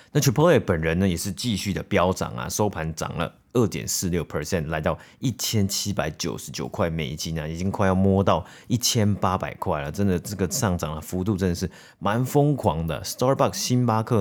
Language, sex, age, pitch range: Chinese, male, 30-49, 85-105 Hz